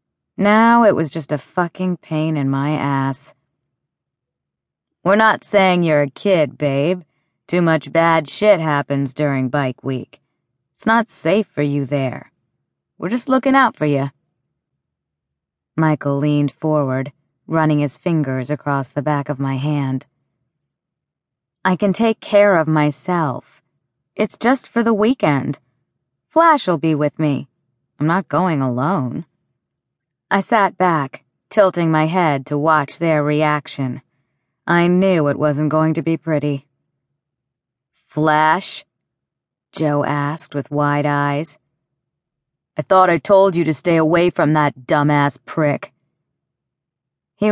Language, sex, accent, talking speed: English, female, American, 135 wpm